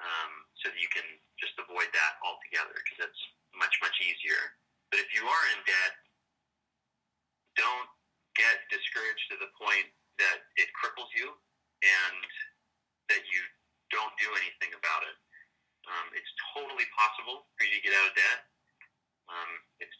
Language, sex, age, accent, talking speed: English, male, 30-49, American, 155 wpm